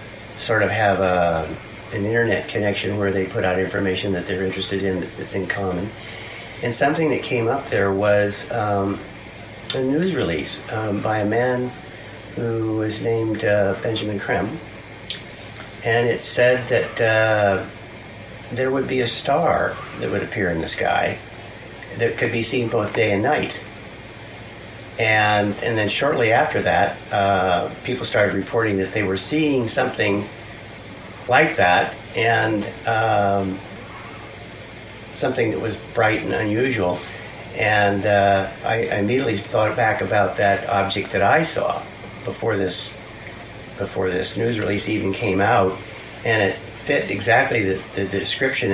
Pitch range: 100-115 Hz